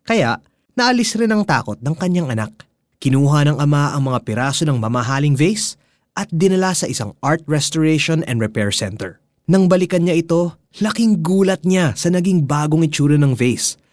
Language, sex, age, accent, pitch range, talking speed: Filipino, male, 20-39, native, 120-165 Hz, 170 wpm